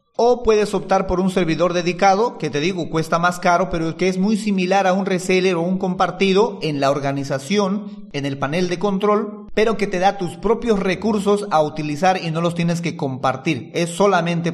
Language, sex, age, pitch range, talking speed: Spanish, male, 40-59, 160-200 Hz, 200 wpm